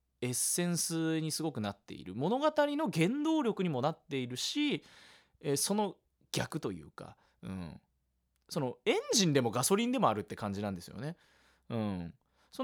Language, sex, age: Japanese, male, 20-39